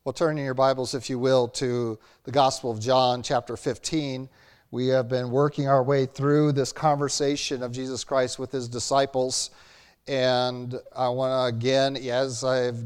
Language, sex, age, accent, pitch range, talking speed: English, male, 50-69, American, 125-145 Hz, 175 wpm